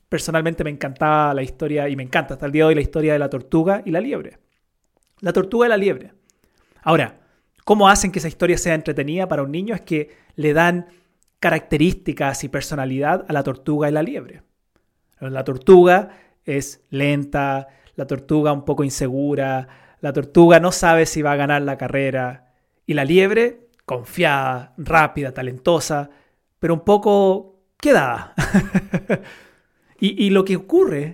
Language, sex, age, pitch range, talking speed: Spanish, male, 30-49, 140-180 Hz, 160 wpm